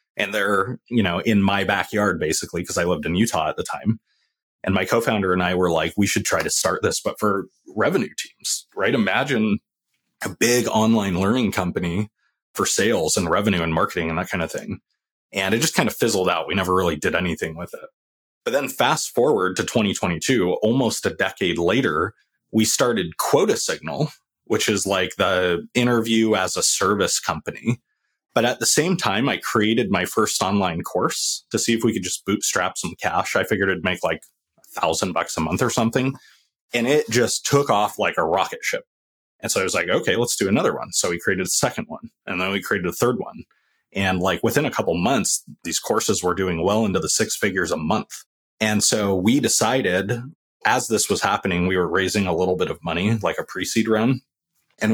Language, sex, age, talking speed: English, male, 30-49, 210 wpm